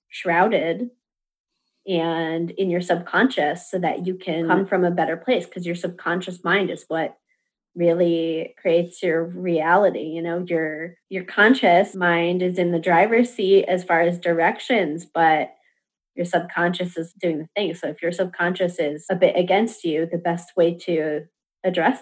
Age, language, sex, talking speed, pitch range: 20-39, English, female, 165 wpm, 170-190 Hz